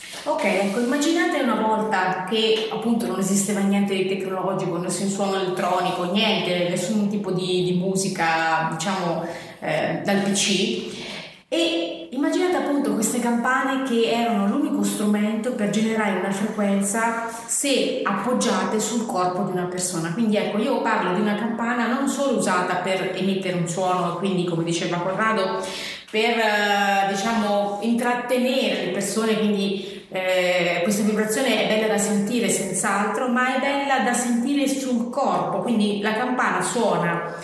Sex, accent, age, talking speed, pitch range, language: female, native, 30-49, 145 wpm, 190-245 Hz, Italian